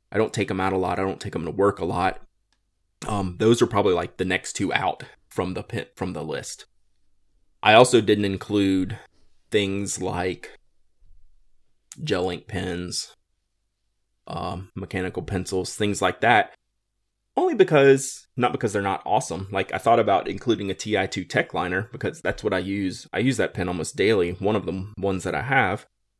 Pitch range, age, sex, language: 95-105 Hz, 20-39, male, English